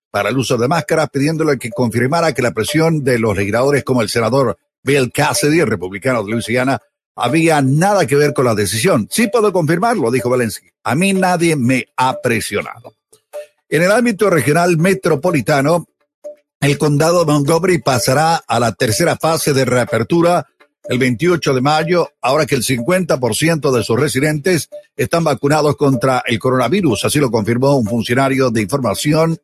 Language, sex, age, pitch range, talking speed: Spanish, male, 60-79, 125-165 Hz, 165 wpm